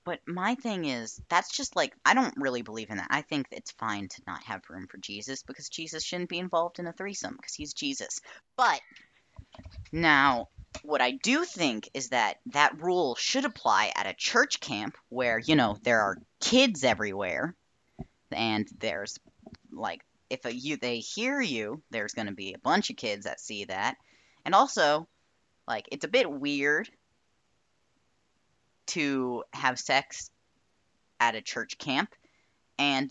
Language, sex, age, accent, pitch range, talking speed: English, female, 10-29, American, 115-165 Hz, 165 wpm